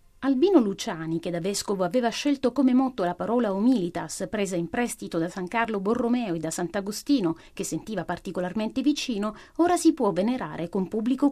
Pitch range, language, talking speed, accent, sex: 185-275 Hz, Italian, 170 wpm, native, female